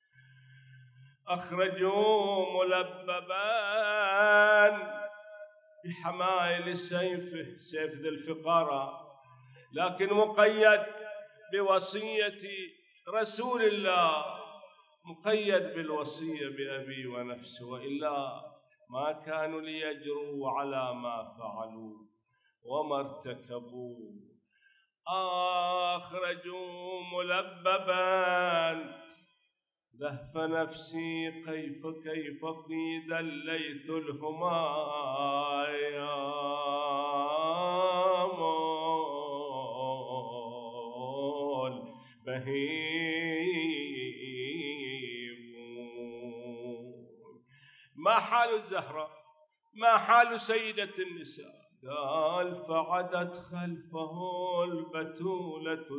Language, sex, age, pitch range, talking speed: Arabic, male, 50-69, 140-185 Hz, 50 wpm